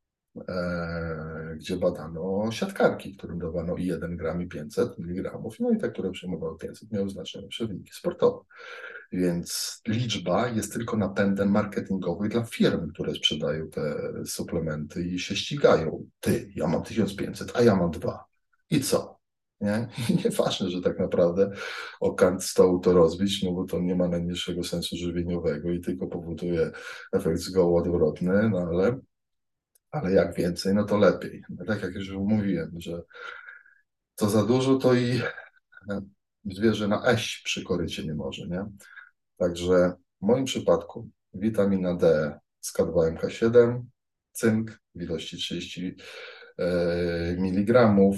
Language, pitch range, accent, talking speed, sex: Polish, 85-110 Hz, native, 140 wpm, male